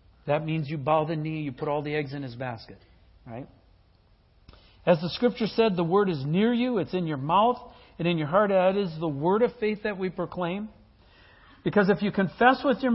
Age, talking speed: 50-69, 220 wpm